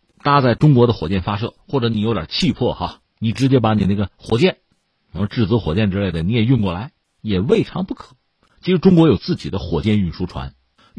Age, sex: 50-69, male